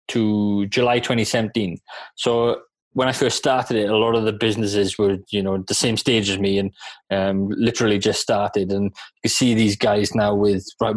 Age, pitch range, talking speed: 20-39, 105-120 Hz, 195 wpm